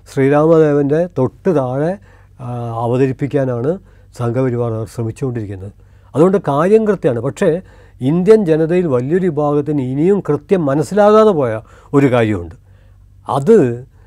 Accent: native